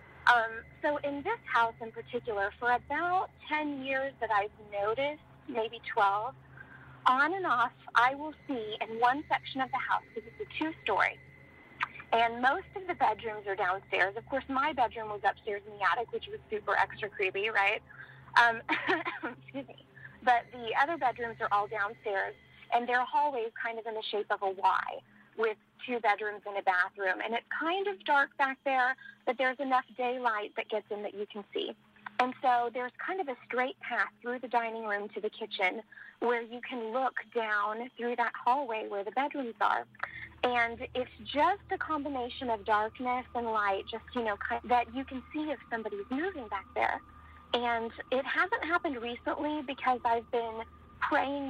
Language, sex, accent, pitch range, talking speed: English, female, American, 220-275 Hz, 185 wpm